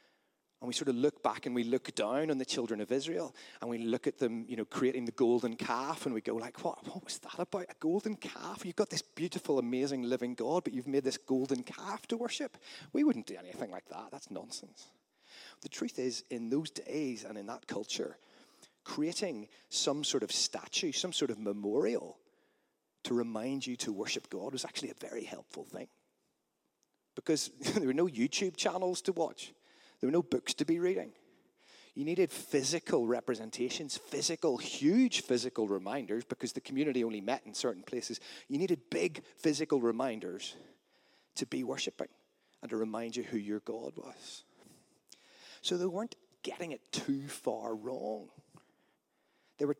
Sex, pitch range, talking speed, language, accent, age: male, 120-185 Hz, 180 wpm, English, British, 30-49